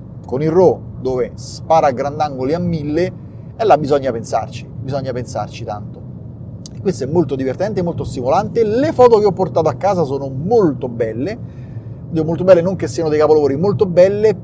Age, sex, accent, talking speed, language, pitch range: 30-49, male, native, 165 wpm, Italian, 120-155 Hz